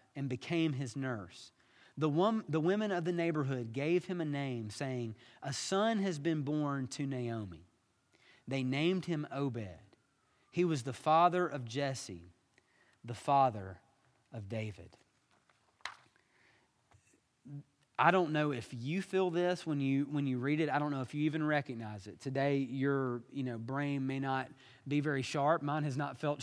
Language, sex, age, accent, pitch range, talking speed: English, male, 30-49, American, 125-160 Hz, 160 wpm